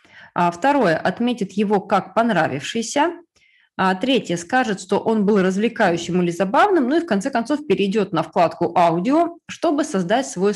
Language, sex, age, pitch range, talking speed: Russian, female, 20-39, 180-235 Hz, 165 wpm